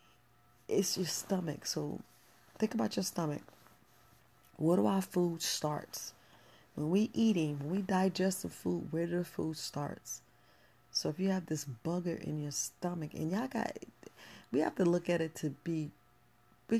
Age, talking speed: 30-49, 170 wpm